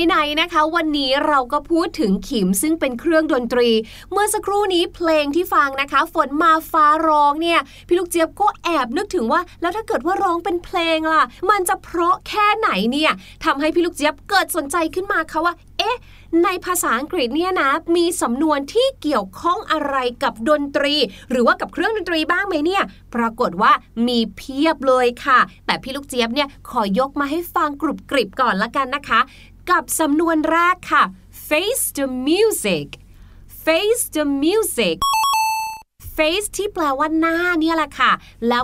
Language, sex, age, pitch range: Thai, female, 20-39, 250-345 Hz